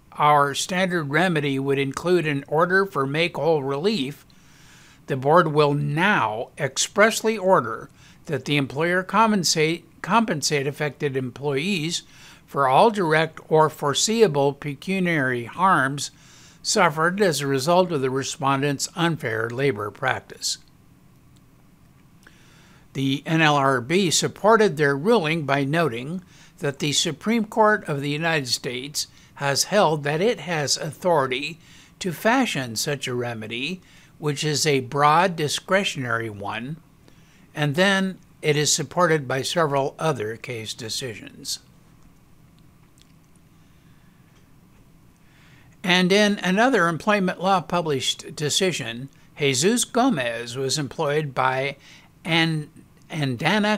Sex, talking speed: male, 105 wpm